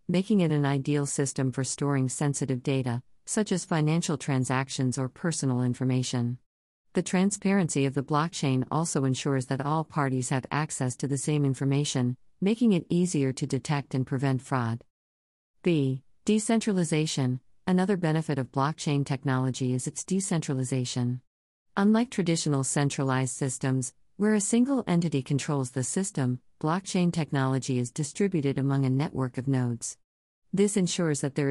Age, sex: 50-69, female